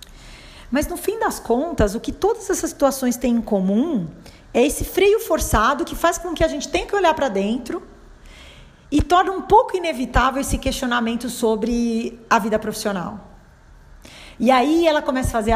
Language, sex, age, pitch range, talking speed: Portuguese, female, 40-59, 205-280 Hz, 175 wpm